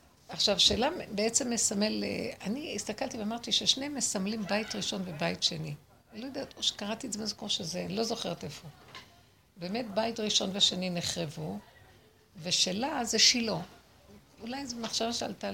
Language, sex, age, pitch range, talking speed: Hebrew, female, 60-79, 175-220 Hz, 150 wpm